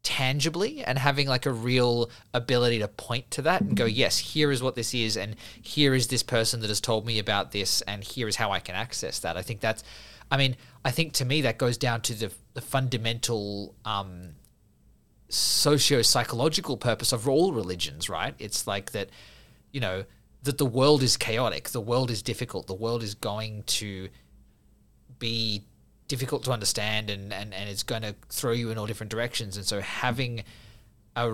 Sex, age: male, 20-39